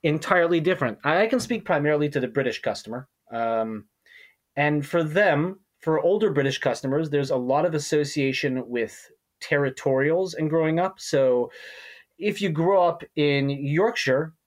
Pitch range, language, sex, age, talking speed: 125-160 Hz, English, male, 30-49, 145 wpm